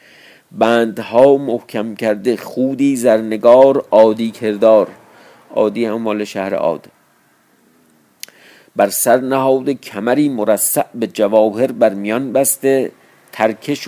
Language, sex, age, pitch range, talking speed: Persian, male, 50-69, 105-130 Hz, 100 wpm